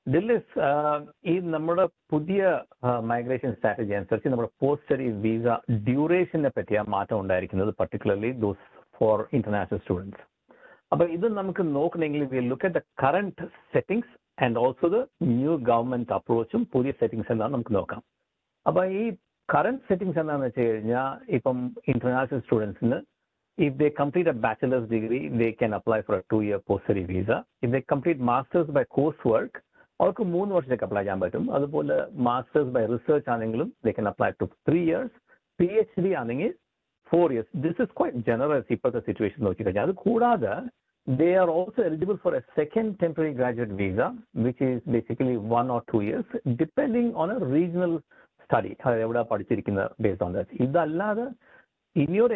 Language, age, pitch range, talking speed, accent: Malayalam, 60-79, 115-175 Hz, 155 wpm, native